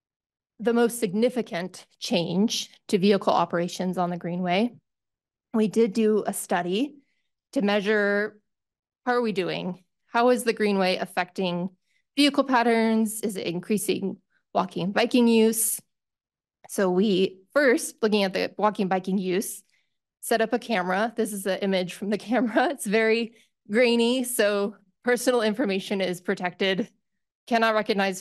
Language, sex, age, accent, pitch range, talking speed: English, female, 20-39, American, 190-230 Hz, 140 wpm